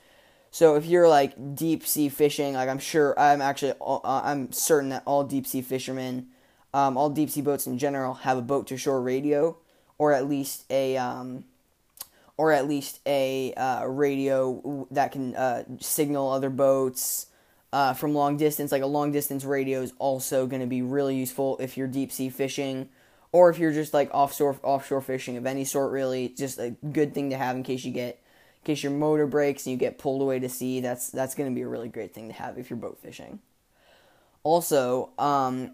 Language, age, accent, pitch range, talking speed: English, 10-29, American, 130-145 Hz, 205 wpm